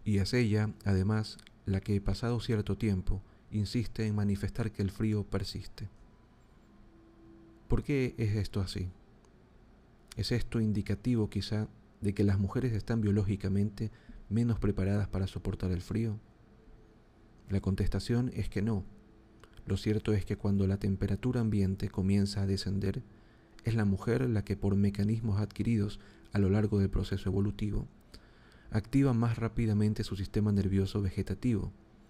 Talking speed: 140 wpm